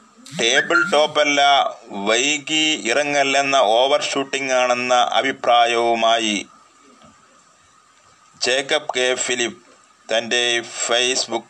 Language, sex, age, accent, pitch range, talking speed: Malayalam, male, 30-49, native, 130-185 Hz, 55 wpm